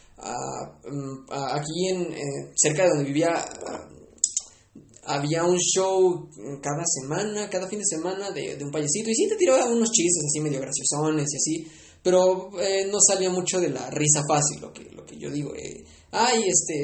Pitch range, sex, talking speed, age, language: 140-180 Hz, male, 190 wpm, 20-39, Spanish